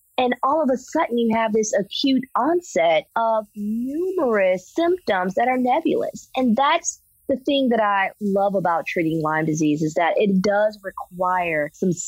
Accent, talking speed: American, 165 wpm